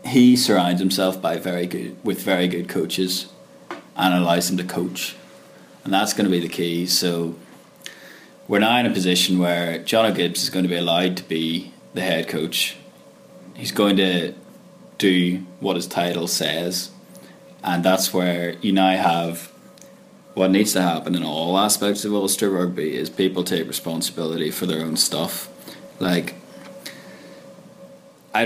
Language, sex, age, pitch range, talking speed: English, male, 20-39, 85-95 Hz, 160 wpm